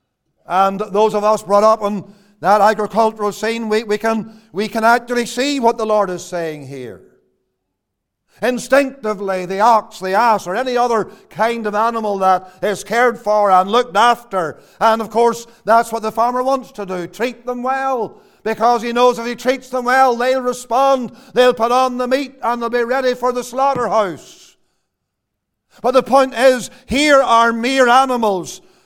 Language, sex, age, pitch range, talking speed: English, male, 50-69, 195-255 Hz, 170 wpm